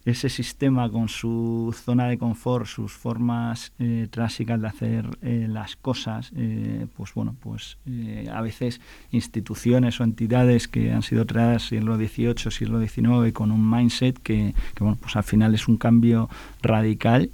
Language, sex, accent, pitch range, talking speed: Spanish, male, Spanish, 105-115 Hz, 165 wpm